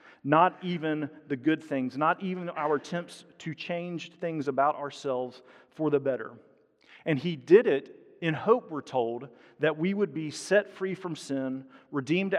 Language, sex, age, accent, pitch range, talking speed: English, male, 40-59, American, 125-155 Hz, 165 wpm